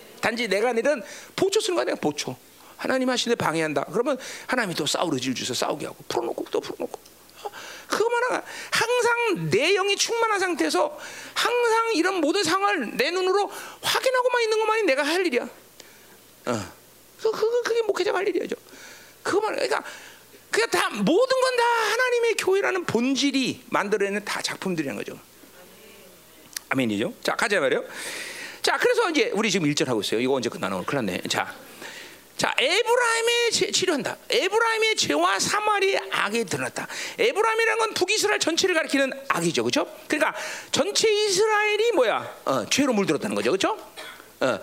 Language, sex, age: Korean, male, 40-59